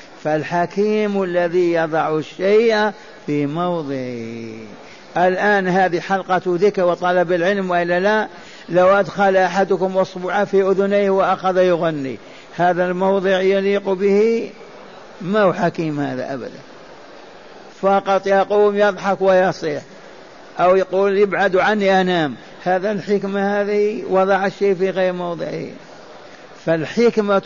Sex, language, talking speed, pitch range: male, Arabic, 105 wpm, 170-200 Hz